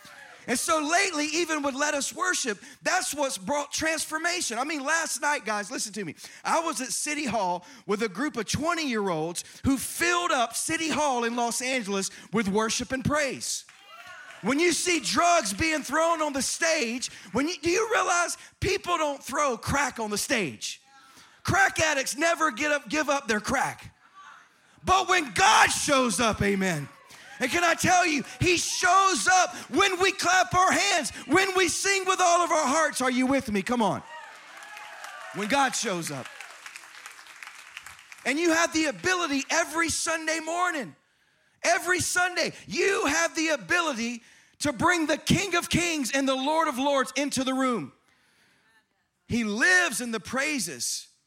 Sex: male